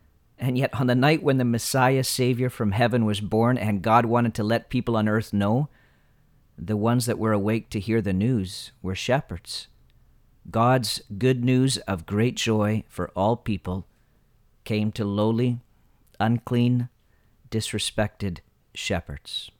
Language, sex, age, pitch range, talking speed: English, male, 40-59, 100-120 Hz, 145 wpm